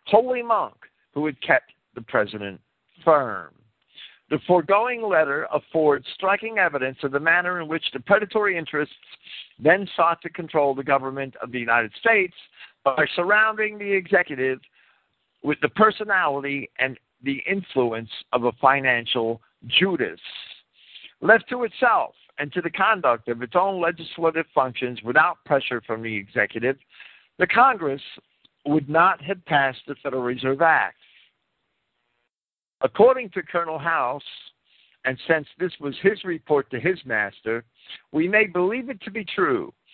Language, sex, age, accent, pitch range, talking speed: English, male, 60-79, American, 130-190 Hz, 140 wpm